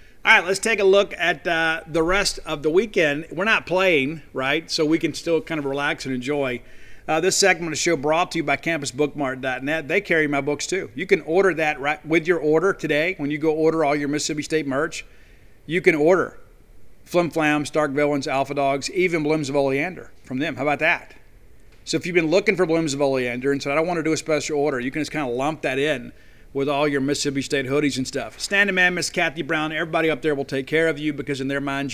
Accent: American